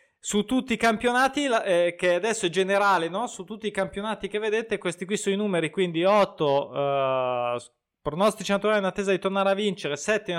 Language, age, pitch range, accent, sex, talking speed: Italian, 20-39, 165-215 Hz, native, male, 195 wpm